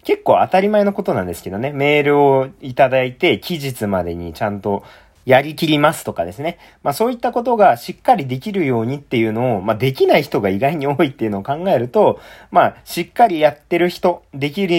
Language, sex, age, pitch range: Japanese, male, 40-59, 110-175 Hz